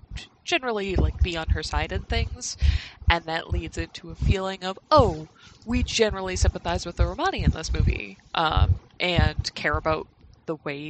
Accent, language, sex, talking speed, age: American, English, female, 170 wpm, 20-39